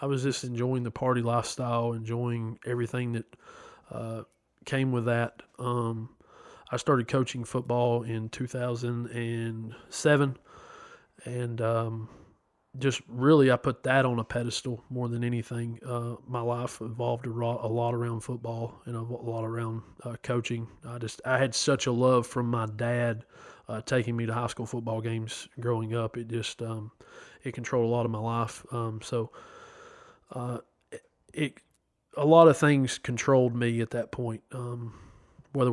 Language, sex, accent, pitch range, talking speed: English, male, American, 115-130 Hz, 165 wpm